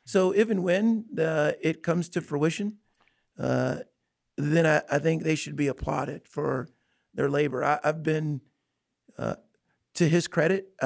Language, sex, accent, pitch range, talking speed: English, male, American, 145-170 Hz, 150 wpm